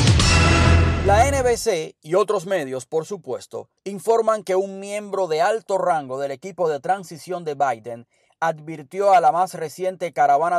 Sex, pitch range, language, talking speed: male, 150-195 Hz, Spanish, 145 wpm